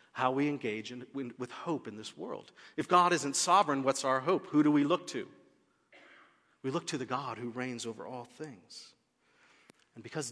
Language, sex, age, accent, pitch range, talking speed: English, male, 40-59, American, 115-150 Hz, 185 wpm